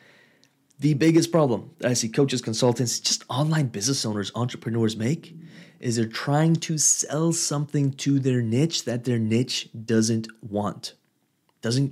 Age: 30-49